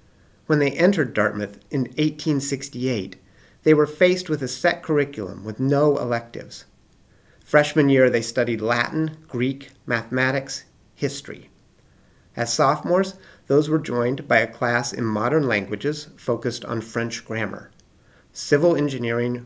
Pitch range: 110-140 Hz